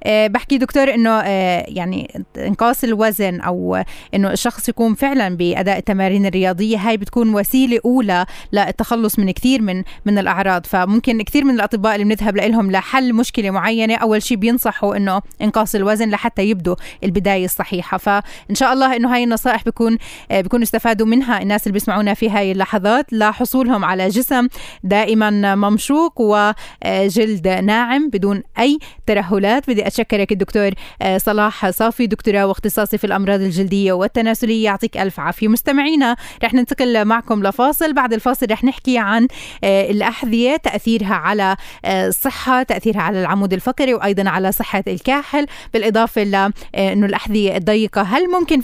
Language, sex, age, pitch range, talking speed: Arabic, female, 20-39, 200-240 Hz, 140 wpm